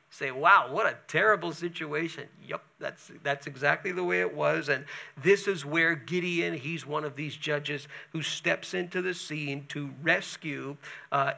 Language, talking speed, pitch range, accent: English, 170 wpm, 145-170 Hz, American